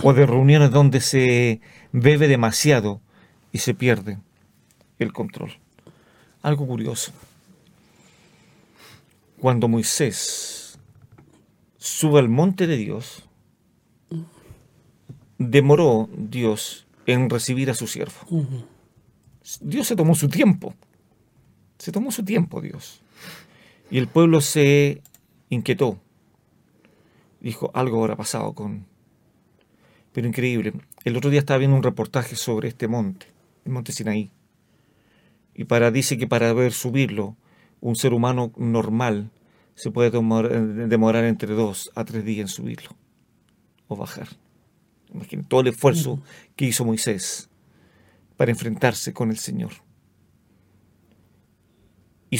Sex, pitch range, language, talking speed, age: male, 110-140 Hz, Spanish, 115 wpm, 40-59